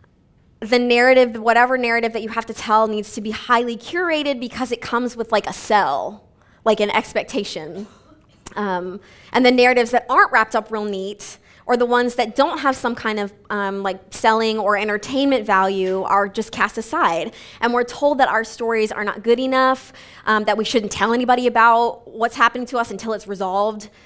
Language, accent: English, American